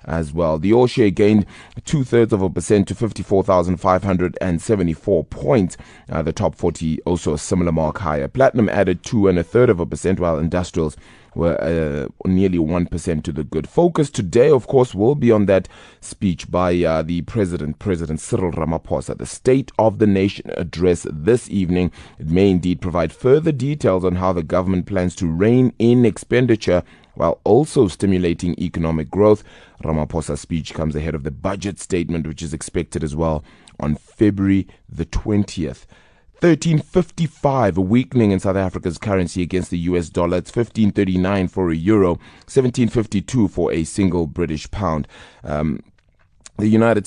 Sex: male